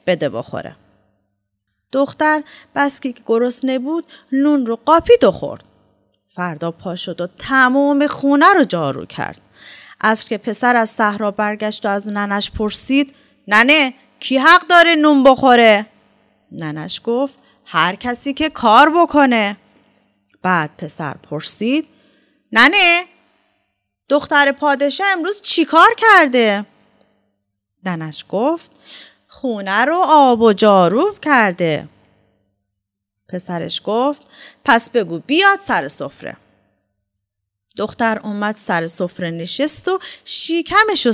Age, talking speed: 30-49, 105 wpm